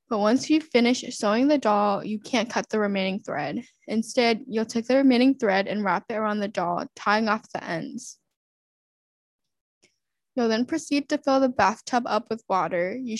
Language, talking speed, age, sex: English, 180 wpm, 10-29, female